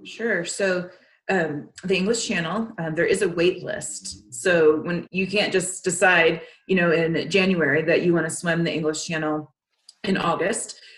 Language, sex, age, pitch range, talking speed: English, female, 30-49, 155-185 Hz, 175 wpm